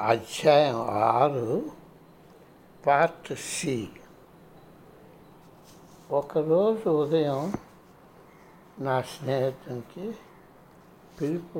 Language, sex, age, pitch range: Telugu, male, 60-79, 135-185 Hz